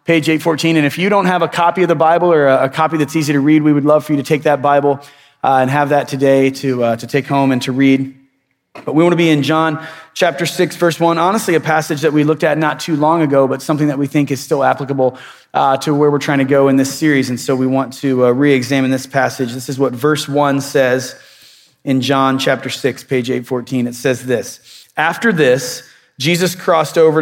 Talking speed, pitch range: 245 wpm, 135-160 Hz